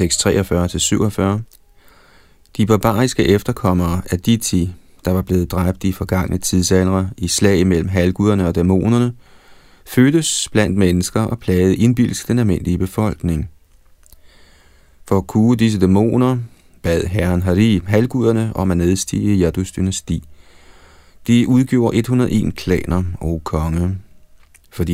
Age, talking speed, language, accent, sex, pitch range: 30-49, 125 wpm, Danish, native, male, 85-110 Hz